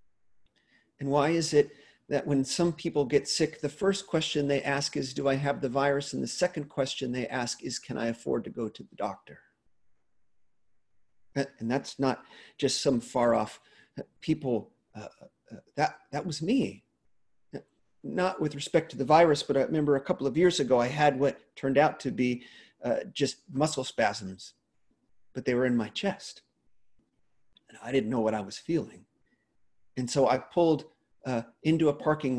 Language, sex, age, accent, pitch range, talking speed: English, male, 40-59, American, 115-150 Hz, 175 wpm